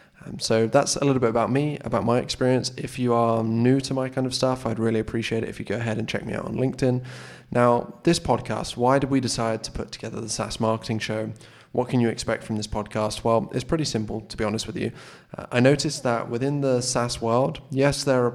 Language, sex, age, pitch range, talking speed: English, male, 20-39, 110-130 Hz, 245 wpm